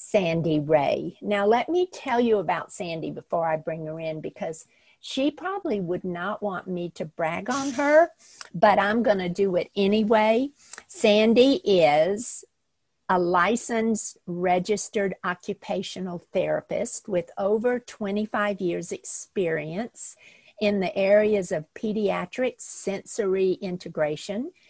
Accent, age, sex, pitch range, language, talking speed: American, 50-69, female, 175-215 Hz, English, 125 wpm